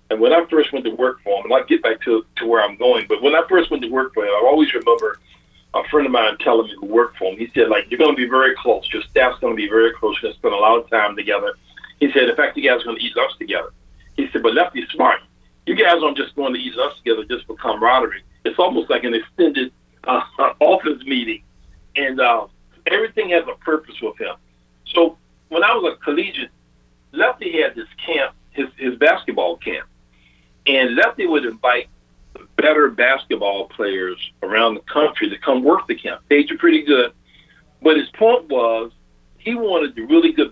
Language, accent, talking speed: English, American, 225 wpm